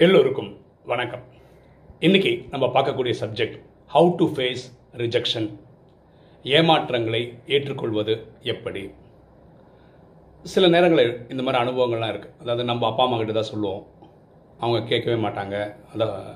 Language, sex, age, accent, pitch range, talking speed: Tamil, male, 30-49, native, 110-150 Hz, 110 wpm